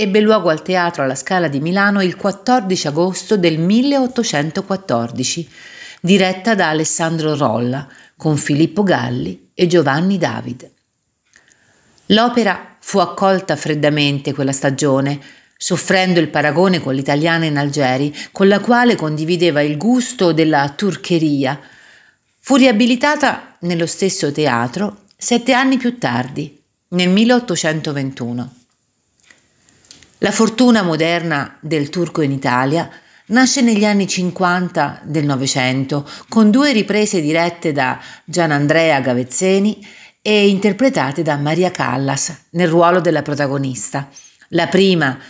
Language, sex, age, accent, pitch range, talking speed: Italian, female, 50-69, native, 145-195 Hz, 115 wpm